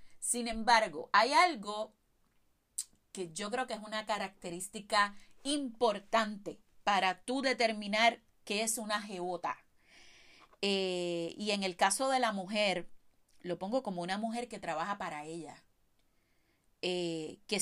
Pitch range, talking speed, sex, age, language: 185-235 Hz, 125 wpm, female, 30-49, Spanish